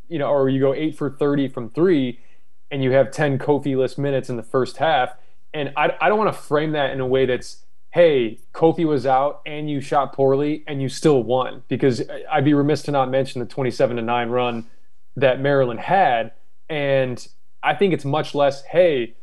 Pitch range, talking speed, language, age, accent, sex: 130-150 Hz, 205 wpm, English, 20-39, American, male